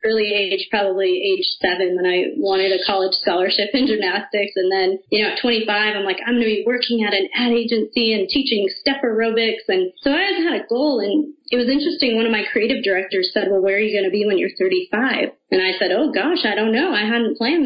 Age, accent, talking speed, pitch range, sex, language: 30-49, American, 240 wpm, 195-235 Hz, female, English